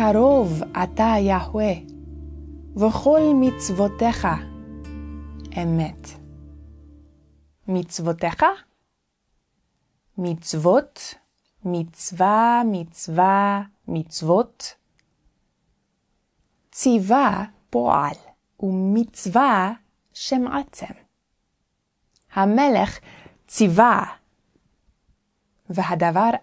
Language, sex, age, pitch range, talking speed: Hebrew, female, 20-39, 170-235 Hz, 40 wpm